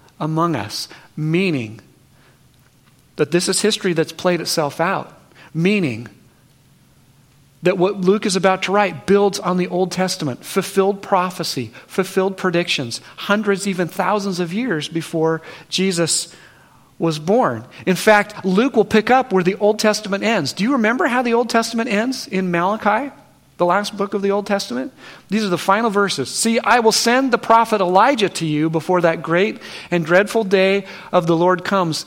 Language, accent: English, American